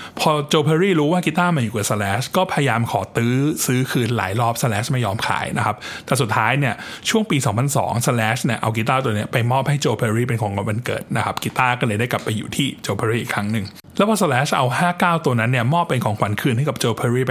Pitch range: 115-150 Hz